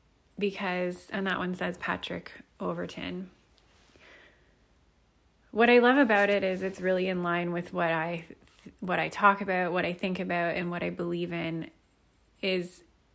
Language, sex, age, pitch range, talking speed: English, female, 20-39, 170-200 Hz, 160 wpm